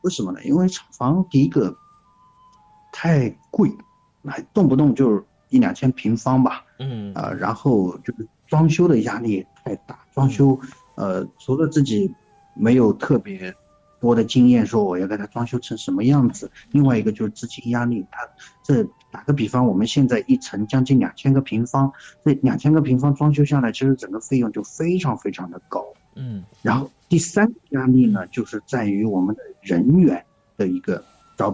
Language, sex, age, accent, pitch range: Chinese, male, 50-69, native, 110-155 Hz